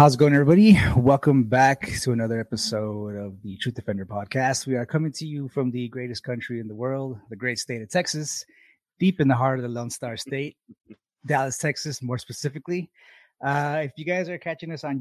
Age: 30-49